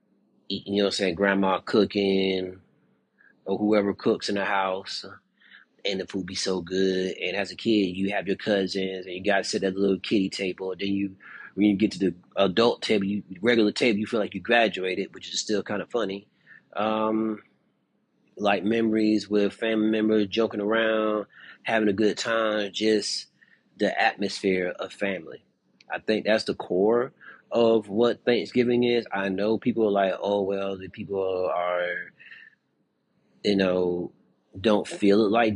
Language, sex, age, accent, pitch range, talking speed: English, male, 30-49, American, 95-110 Hz, 170 wpm